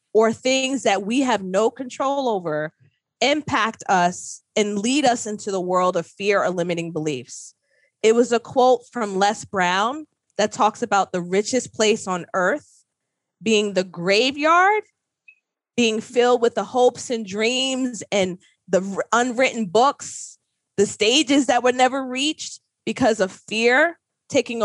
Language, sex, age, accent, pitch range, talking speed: English, female, 20-39, American, 185-240 Hz, 145 wpm